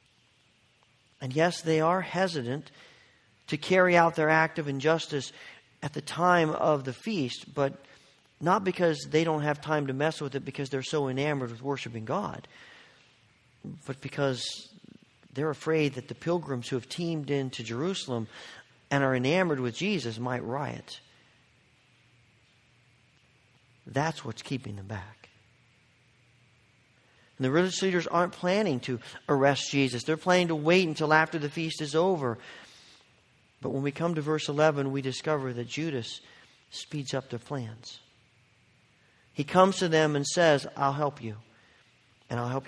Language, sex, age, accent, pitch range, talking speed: English, male, 40-59, American, 120-155 Hz, 150 wpm